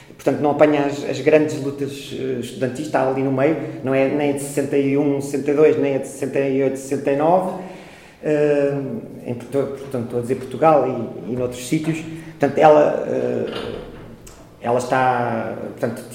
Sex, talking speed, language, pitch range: male, 145 wpm, Portuguese, 135-160 Hz